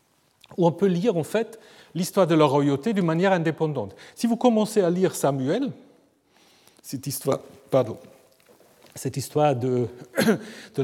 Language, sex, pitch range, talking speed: French, male, 145-230 Hz, 120 wpm